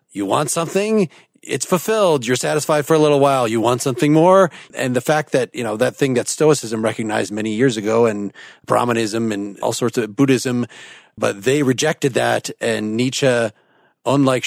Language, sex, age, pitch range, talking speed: English, male, 30-49, 115-140 Hz, 180 wpm